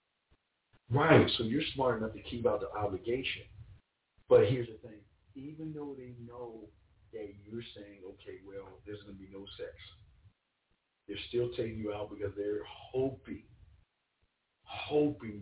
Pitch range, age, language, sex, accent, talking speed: 100-125 Hz, 50-69, English, male, American, 150 wpm